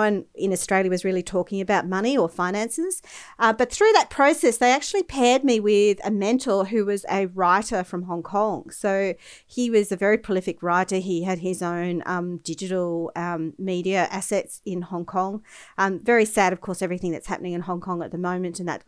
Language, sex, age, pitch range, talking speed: English, female, 40-59, 180-225 Hz, 200 wpm